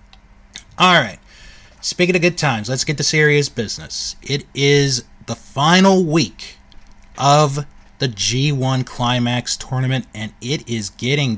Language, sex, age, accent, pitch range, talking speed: English, male, 30-49, American, 120-180 Hz, 130 wpm